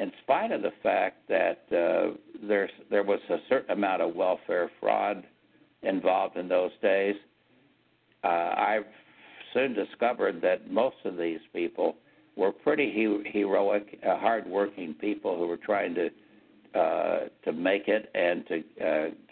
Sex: male